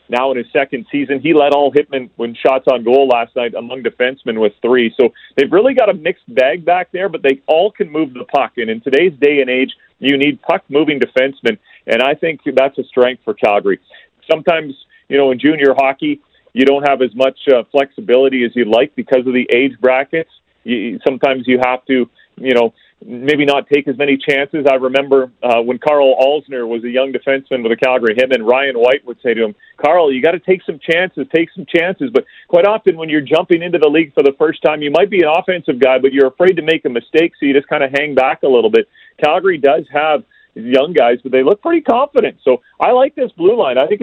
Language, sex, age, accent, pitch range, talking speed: English, male, 40-59, American, 130-175 Hz, 235 wpm